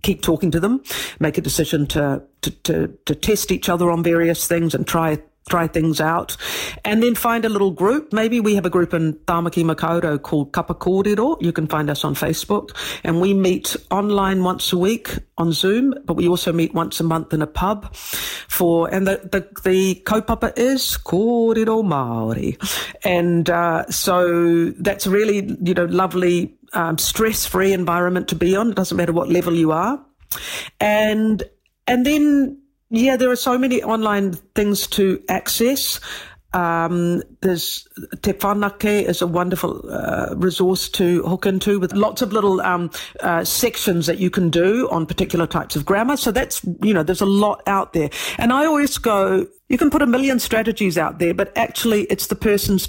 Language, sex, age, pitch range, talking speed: English, female, 50-69, 170-215 Hz, 190 wpm